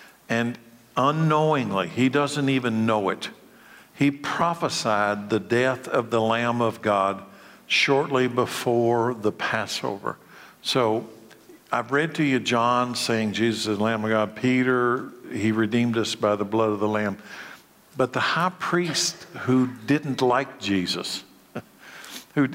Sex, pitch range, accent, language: male, 110-130 Hz, American, English